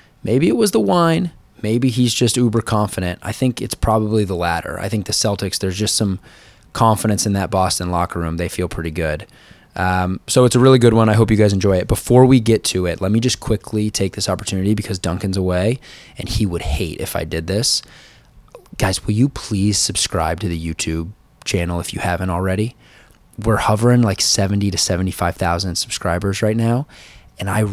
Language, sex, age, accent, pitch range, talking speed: English, male, 20-39, American, 95-120 Hz, 200 wpm